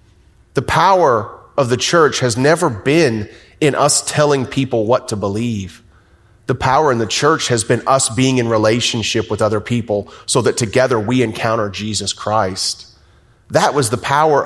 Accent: American